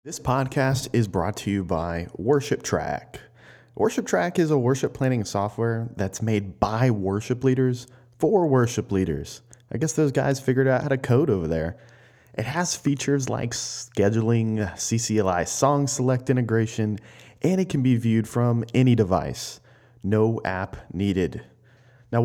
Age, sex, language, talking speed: 30-49, male, English, 145 wpm